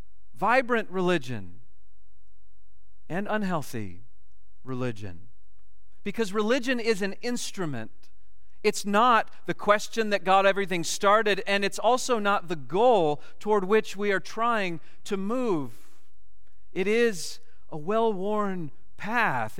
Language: English